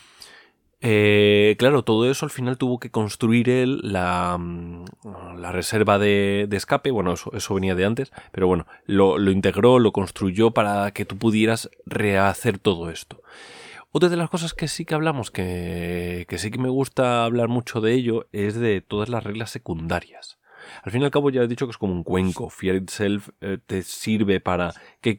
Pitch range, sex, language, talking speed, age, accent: 90-115 Hz, male, Spanish, 190 wpm, 30-49, Spanish